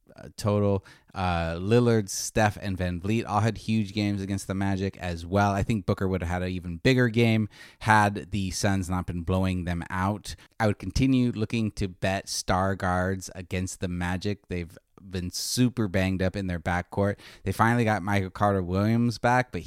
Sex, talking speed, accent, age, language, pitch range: male, 185 wpm, American, 30-49, English, 95-110 Hz